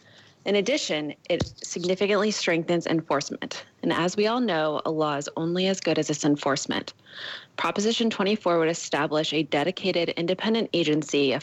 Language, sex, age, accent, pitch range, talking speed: English, female, 20-39, American, 155-190 Hz, 150 wpm